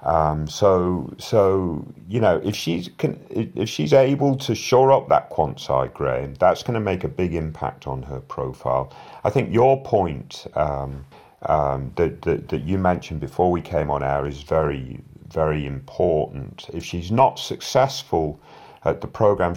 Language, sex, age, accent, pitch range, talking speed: English, male, 40-59, British, 75-95 Hz, 165 wpm